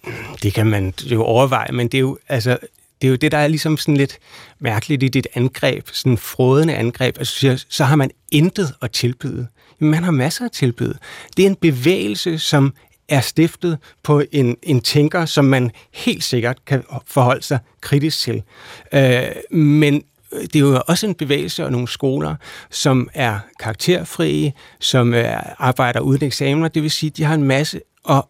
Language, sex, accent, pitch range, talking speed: Danish, male, native, 130-160 Hz, 180 wpm